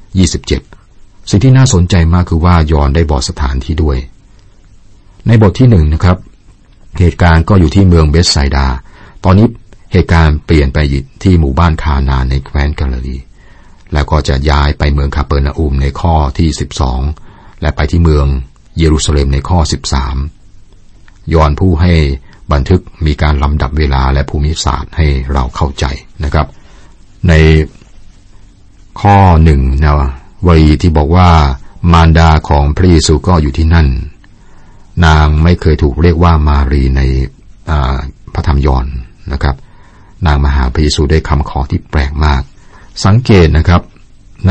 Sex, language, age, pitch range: male, Thai, 60-79, 75-95 Hz